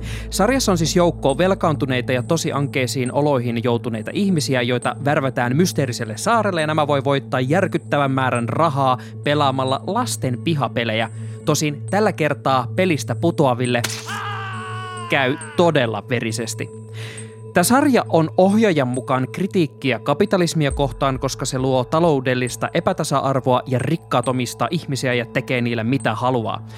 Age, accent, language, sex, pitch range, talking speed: 20-39, native, Finnish, male, 120-160 Hz, 120 wpm